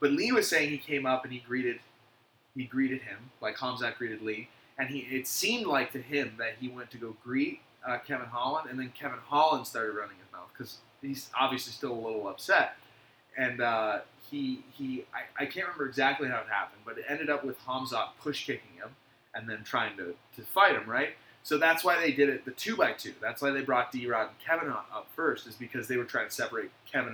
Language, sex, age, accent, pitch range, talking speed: English, male, 20-39, American, 125-145 Hz, 230 wpm